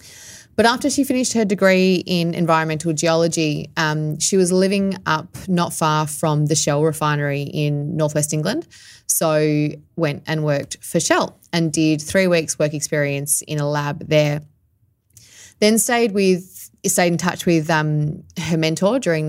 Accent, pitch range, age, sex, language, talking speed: Australian, 150-175 Hz, 20-39, female, English, 155 wpm